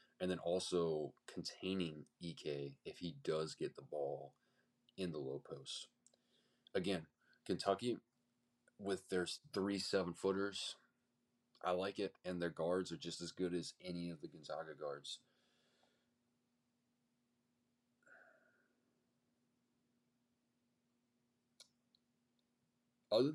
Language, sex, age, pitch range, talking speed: English, male, 20-39, 85-120 Hz, 100 wpm